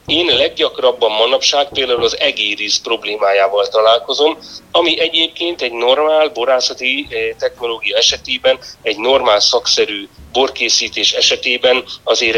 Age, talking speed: 30-49, 100 wpm